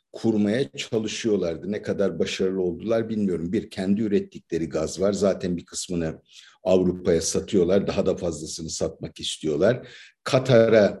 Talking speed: 125 wpm